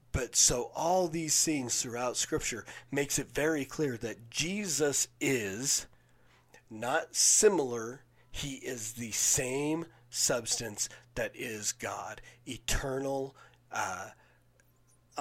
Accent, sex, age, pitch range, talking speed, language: American, male, 40-59, 120-140 Hz, 105 wpm, English